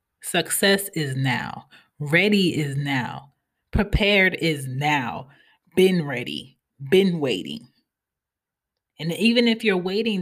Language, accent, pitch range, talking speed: English, American, 135-180 Hz, 105 wpm